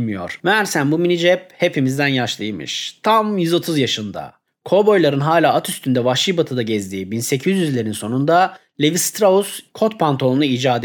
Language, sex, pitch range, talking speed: Turkish, male, 130-190 Hz, 120 wpm